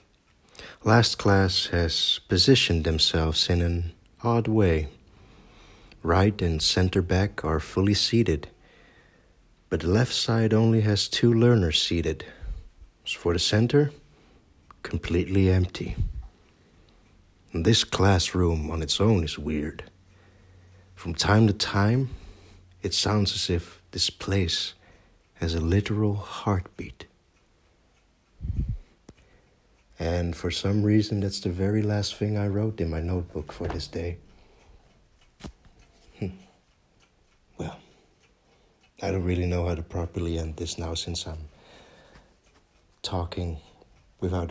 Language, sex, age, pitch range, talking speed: English, male, 60-79, 85-105 Hz, 115 wpm